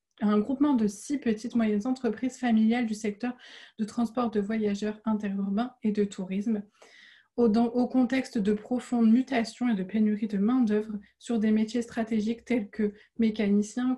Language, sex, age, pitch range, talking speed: French, female, 20-39, 210-245 Hz, 150 wpm